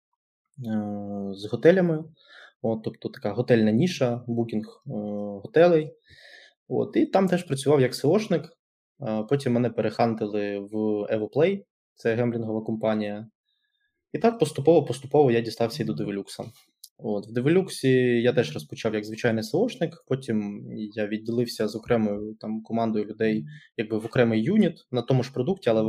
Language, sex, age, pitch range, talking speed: Ukrainian, male, 20-39, 110-145 Hz, 135 wpm